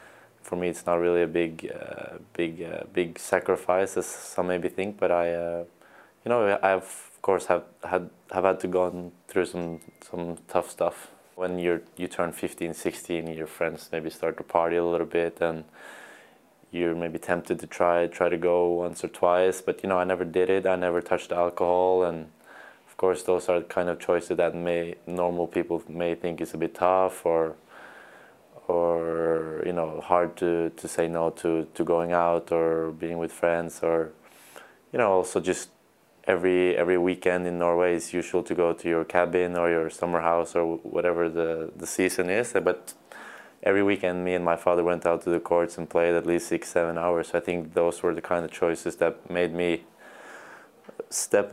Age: 20-39